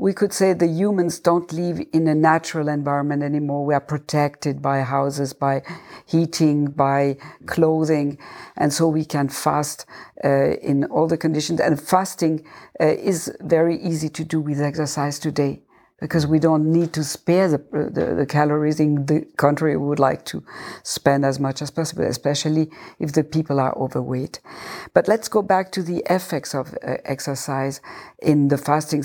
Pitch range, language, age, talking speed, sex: 145-165 Hz, English, 60-79, 170 wpm, female